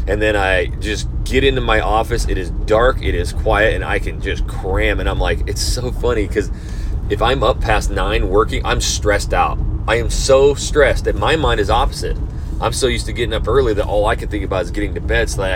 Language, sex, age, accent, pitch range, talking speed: English, male, 30-49, American, 80-135 Hz, 245 wpm